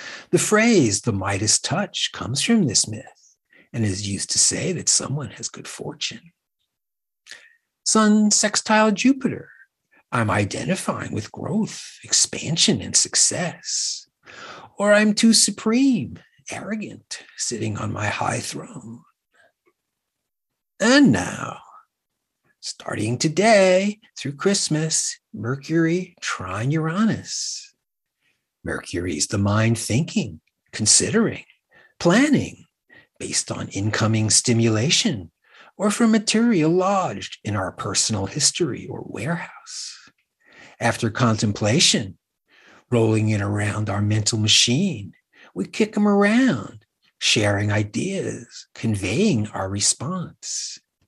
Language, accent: English, American